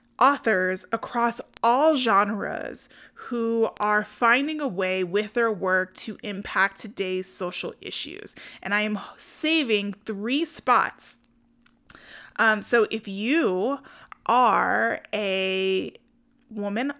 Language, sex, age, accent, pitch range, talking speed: English, female, 30-49, American, 195-235 Hz, 105 wpm